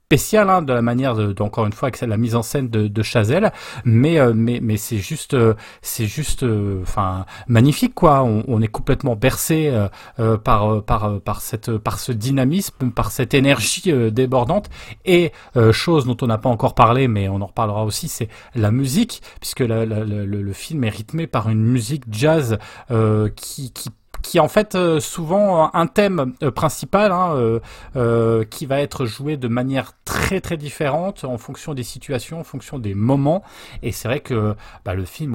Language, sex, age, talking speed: French, male, 30-49, 205 wpm